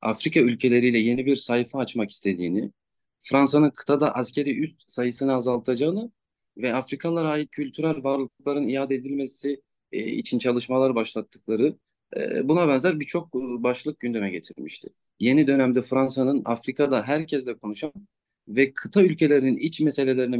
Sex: male